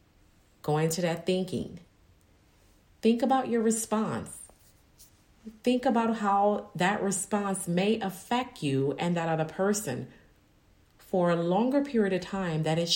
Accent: American